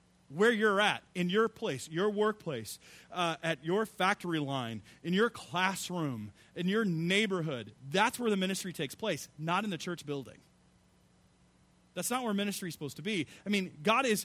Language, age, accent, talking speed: English, 30-49, American, 175 wpm